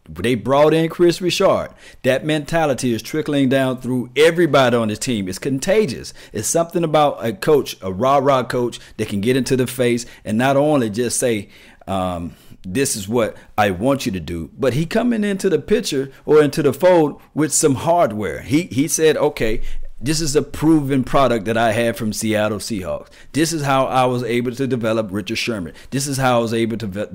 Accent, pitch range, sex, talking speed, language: American, 110-150 Hz, male, 200 wpm, English